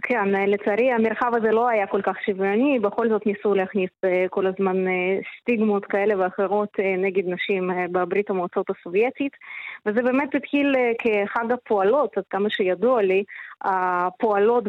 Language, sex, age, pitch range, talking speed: Hebrew, female, 20-39, 200-240 Hz, 135 wpm